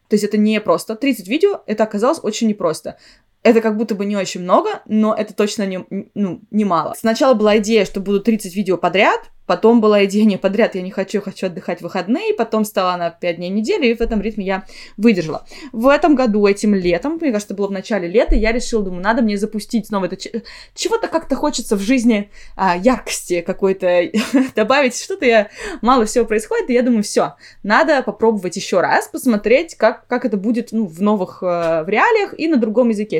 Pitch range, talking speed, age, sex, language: 200-245 Hz, 200 wpm, 20-39, female, Russian